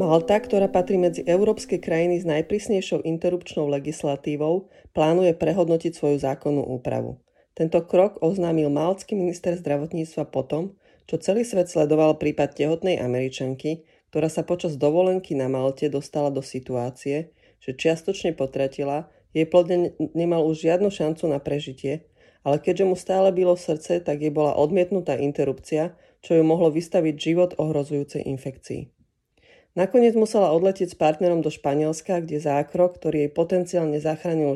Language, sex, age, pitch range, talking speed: Slovak, female, 30-49, 145-180 Hz, 140 wpm